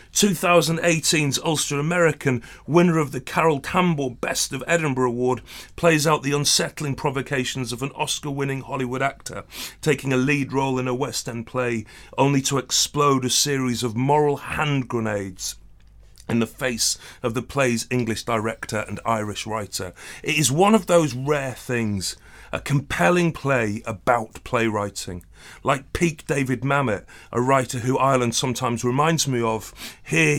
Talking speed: 150 wpm